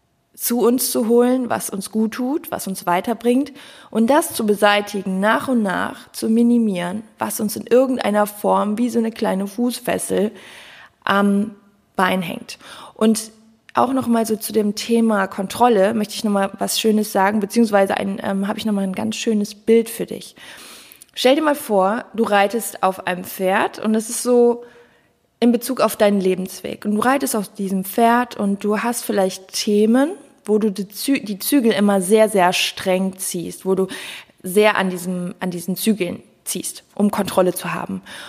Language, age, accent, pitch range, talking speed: German, 20-39, German, 195-235 Hz, 170 wpm